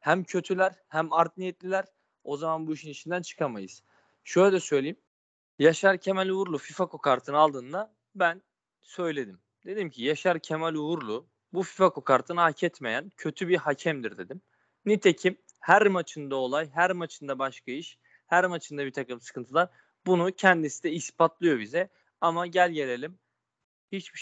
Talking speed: 145 wpm